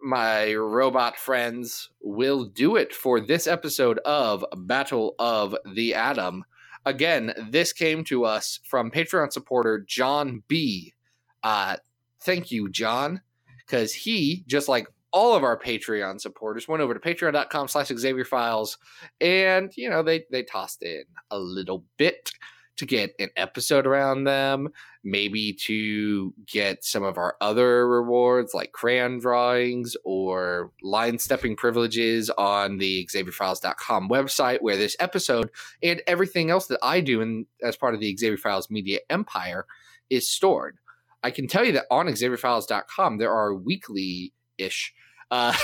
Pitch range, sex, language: 110-145 Hz, male, English